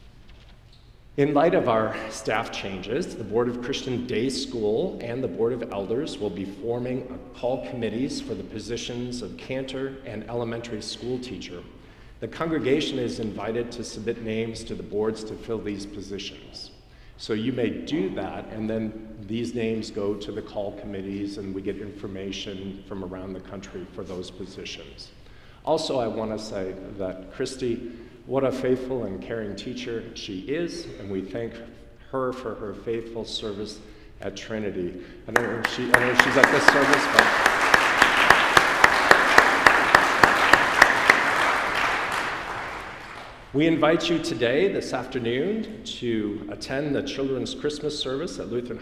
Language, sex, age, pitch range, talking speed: English, male, 40-59, 105-125 Hz, 145 wpm